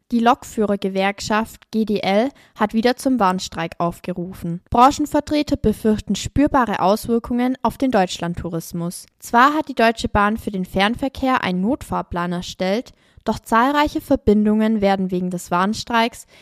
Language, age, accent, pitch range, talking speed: German, 20-39, German, 195-250 Hz, 120 wpm